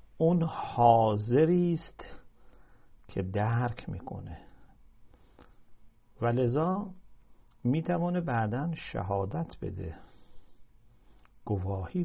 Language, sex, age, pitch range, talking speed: English, male, 50-69, 105-135 Hz, 65 wpm